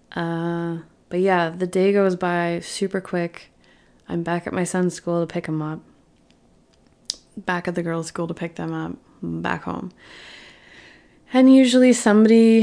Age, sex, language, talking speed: 20-39, female, English, 160 wpm